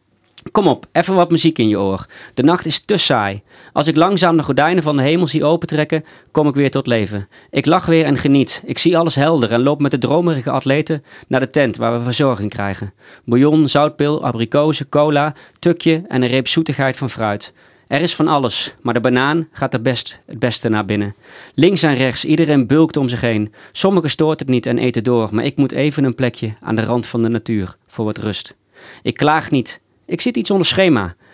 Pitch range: 115-150 Hz